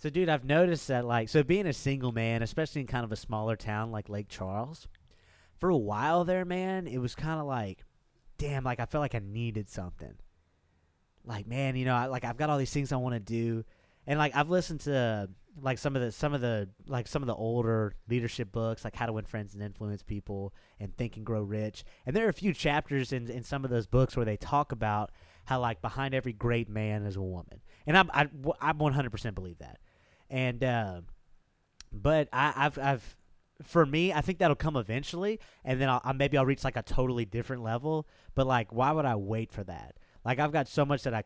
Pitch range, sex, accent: 110-145 Hz, male, American